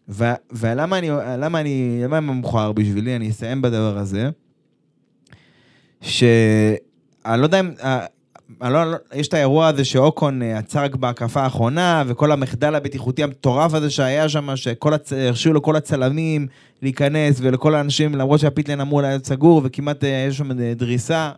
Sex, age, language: male, 20-39, Hebrew